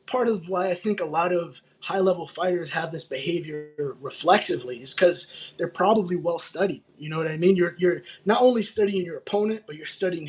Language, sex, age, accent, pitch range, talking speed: English, male, 20-39, American, 165-200 Hz, 210 wpm